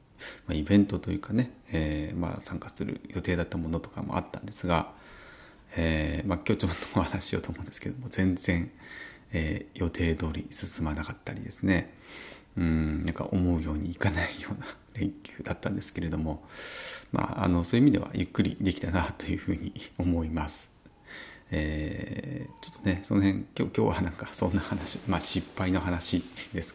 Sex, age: male, 30-49